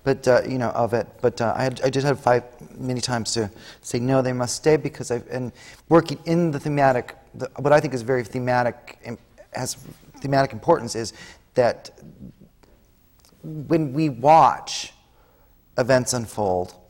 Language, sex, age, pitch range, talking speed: English, male, 40-59, 110-135 Hz, 155 wpm